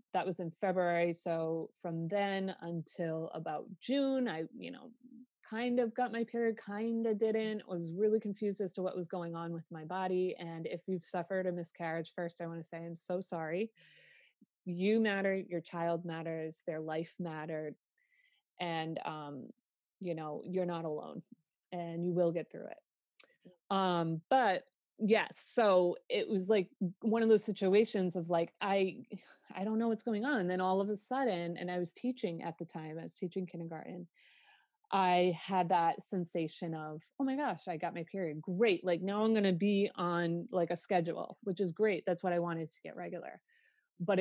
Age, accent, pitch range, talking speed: 20-39, American, 170-215 Hz, 190 wpm